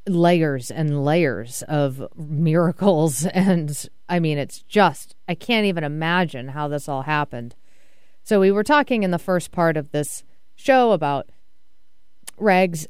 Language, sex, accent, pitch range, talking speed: English, female, American, 140-170 Hz, 145 wpm